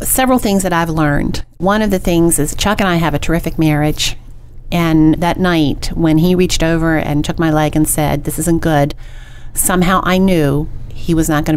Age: 40-59